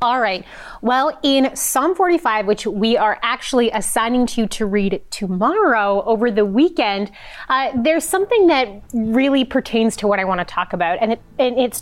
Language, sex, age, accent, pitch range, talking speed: English, female, 30-49, American, 205-260 Hz, 180 wpm